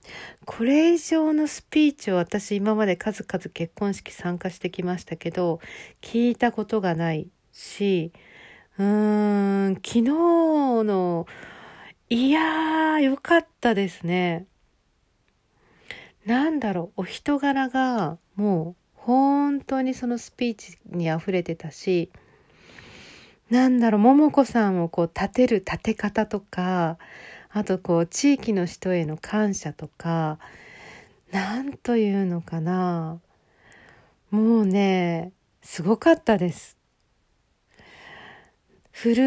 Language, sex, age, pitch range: Japanese, female, 40-59, 180-245 Hz